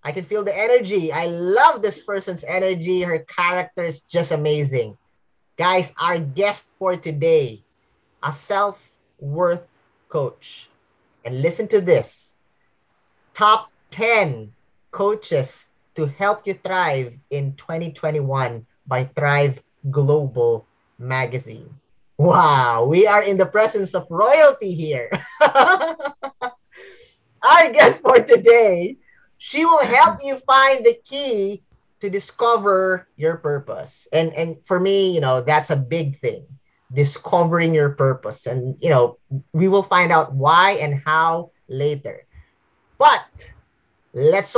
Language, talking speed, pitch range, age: English, 120 wpm, 145-210 Hz, 20-39